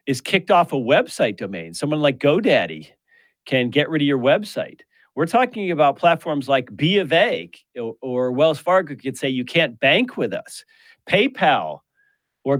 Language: English